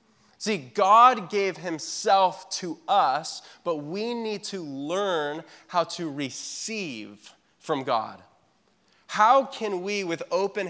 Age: 20-39